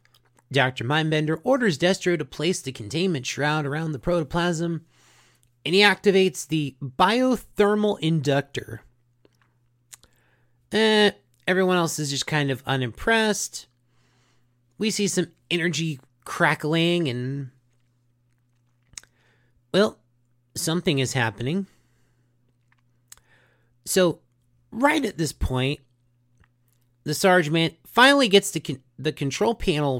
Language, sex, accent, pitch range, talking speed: English, male, American, 120-180 Hz, 100 wpm